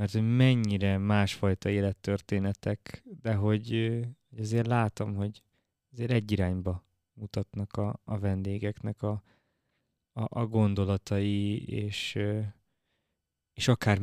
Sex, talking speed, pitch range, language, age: male, 105 wpm, 100-110 Hz, Hungarian, 20-39